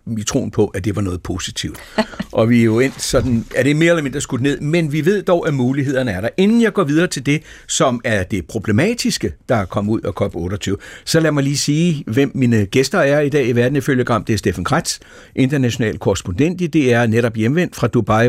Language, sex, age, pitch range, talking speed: Danish, male, 60-79, 110-145 Hz, 230 wpm